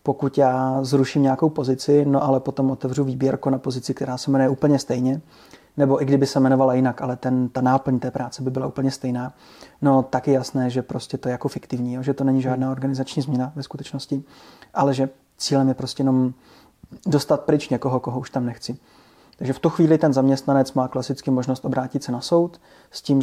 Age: 30-49